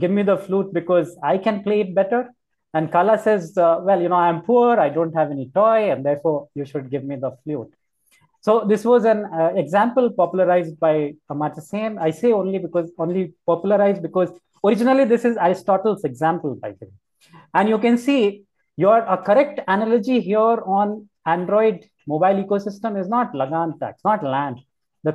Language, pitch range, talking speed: English, 165-220 Hz, 175 wpm